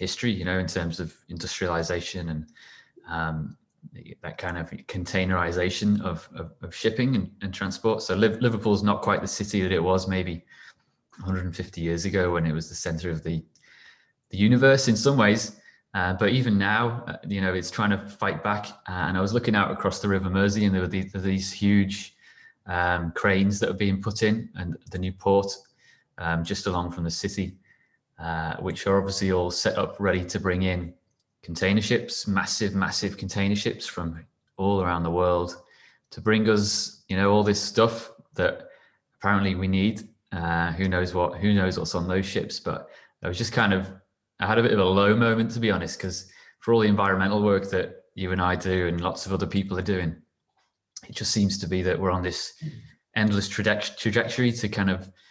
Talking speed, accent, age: 200 wpm, British, 20-39